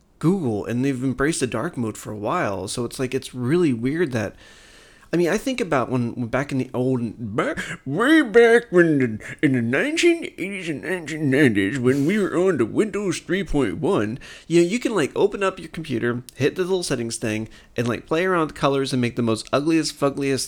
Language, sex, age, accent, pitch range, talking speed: English, male, 30-49, American, 120-160 Hz, 210 wpm